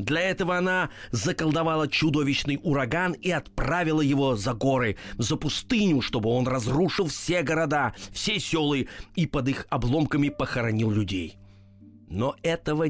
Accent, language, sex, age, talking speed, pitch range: native, Russian, male, 30-49, 130 wpm, 115-160 Hz